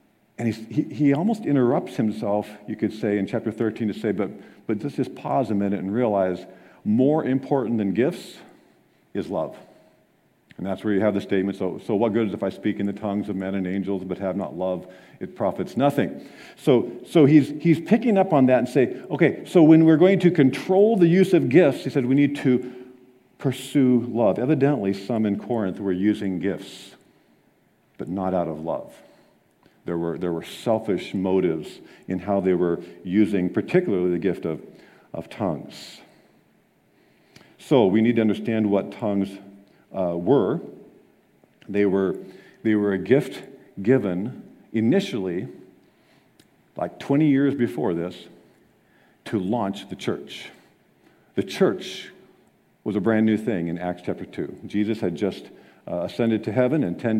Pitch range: 95-130 Hz